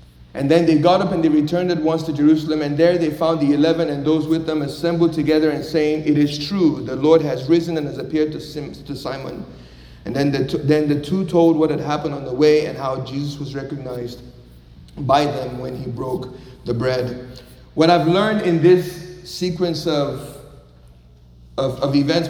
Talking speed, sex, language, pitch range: 195 wpm, male, English, 140-165 Hz